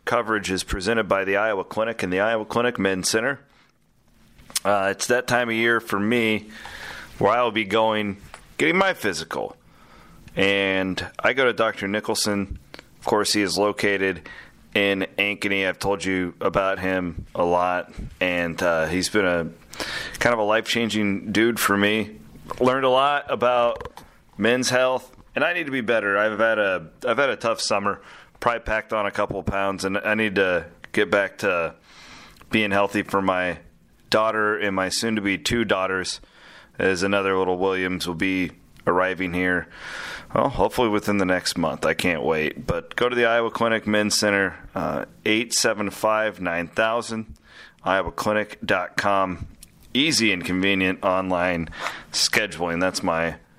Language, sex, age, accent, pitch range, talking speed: English, male, 30-49, American, 95-110 Hz, 165 wpm